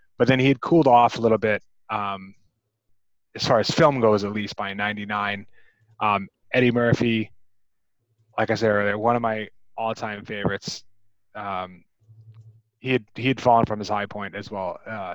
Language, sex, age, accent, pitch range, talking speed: English, male, 20-39, American, 105-120 Hz, 170 wpm